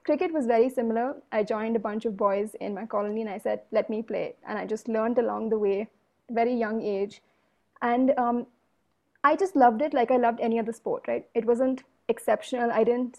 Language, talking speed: English, 215 wpm